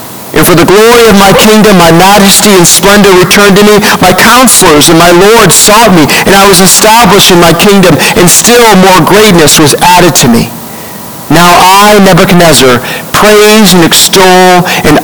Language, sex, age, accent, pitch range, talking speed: English, male, 50-69, American, 175-220 Hz, 170 wpm